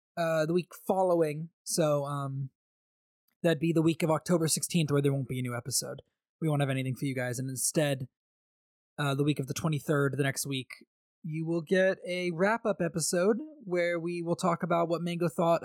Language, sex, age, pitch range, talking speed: English, male, 20-39, 150-200 Hz, 205 wpm